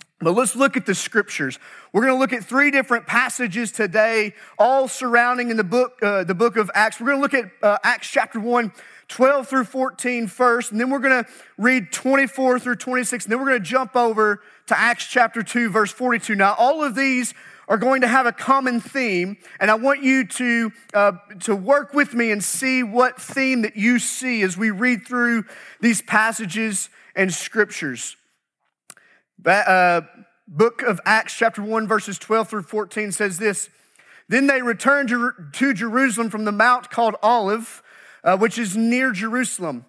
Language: English